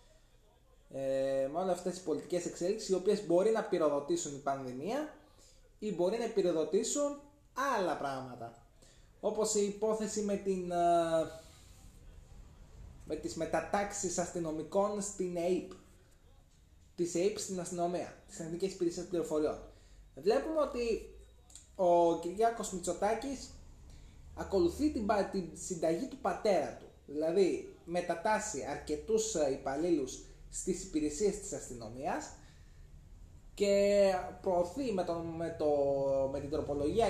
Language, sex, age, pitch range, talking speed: Greek, male, 20-39, 135-200 Hz, 110 wpm